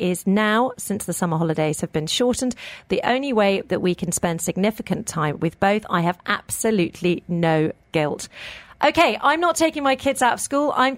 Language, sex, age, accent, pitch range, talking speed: English, female, 40-59, British, 200-300 Hz, 190 wpm